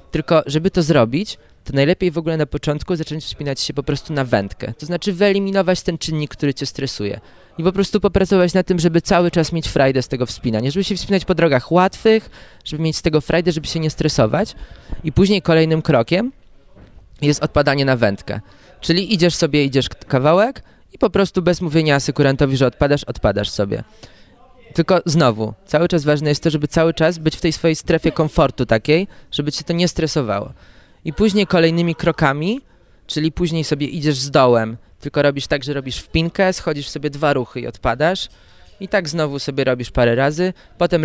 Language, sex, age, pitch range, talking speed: Polish, male, 20-39, 140-170 Hz, 190 wpm